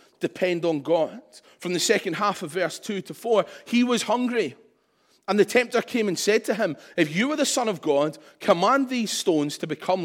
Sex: male